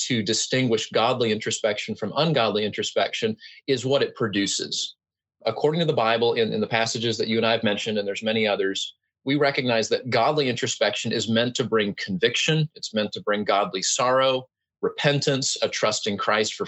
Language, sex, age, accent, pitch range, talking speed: English, male, 30-49, American, 110-135 Hz, 185 wpm